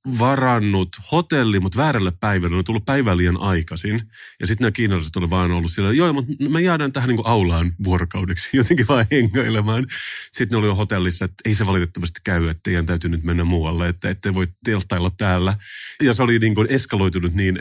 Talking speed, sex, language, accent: 185 wpm, male, Finnish, native